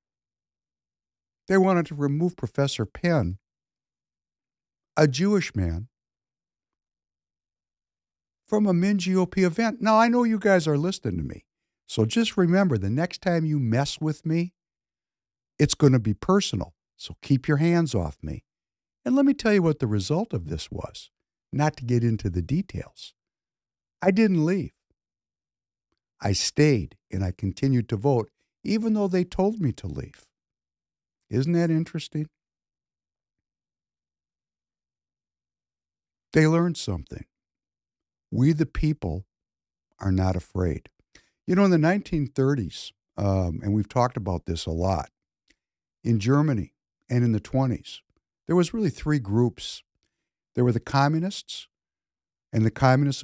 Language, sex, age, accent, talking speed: English, male, 60-79, American, 135 wpm